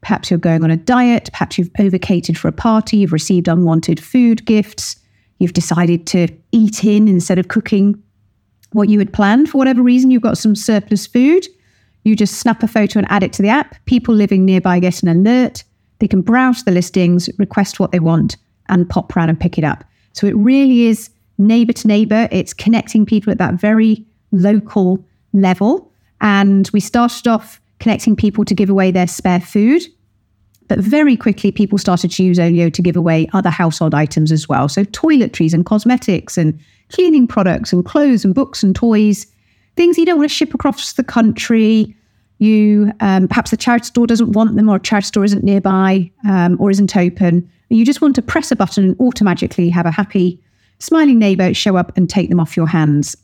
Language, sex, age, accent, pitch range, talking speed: English, female, 40-59, British, 180-225 Hz, 200 wpm